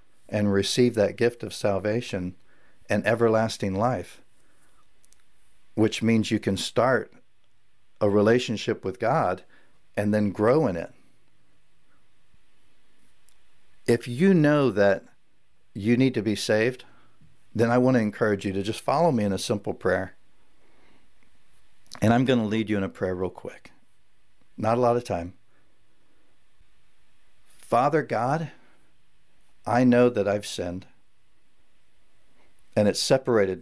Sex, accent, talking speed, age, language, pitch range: male, American, 125 wpm, 60-79, English, 100-120 Hz